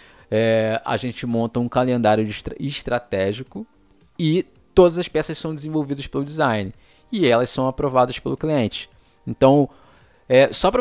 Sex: male